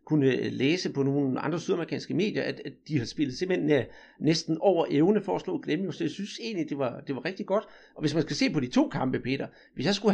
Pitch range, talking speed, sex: 140-195 Hz, 250 wpm, male